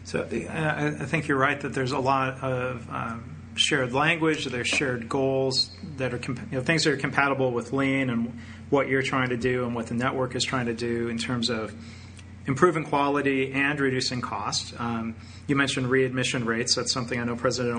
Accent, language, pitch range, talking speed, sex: American, English, 115-135 Hz, 200 wpm, male